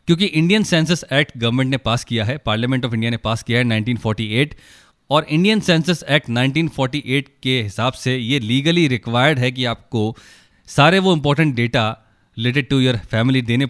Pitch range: 115-145 Hz